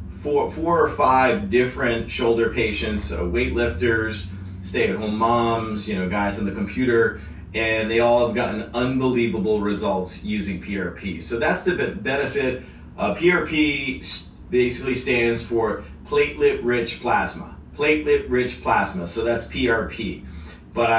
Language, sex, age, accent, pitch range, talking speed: English, male, 30-49, American, 100-120 Hz, 125 wpm